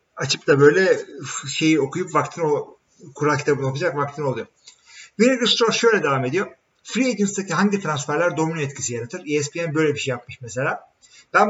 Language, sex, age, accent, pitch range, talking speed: Turkish, male, 50-69, native, 130-205 Hz, 160 wpm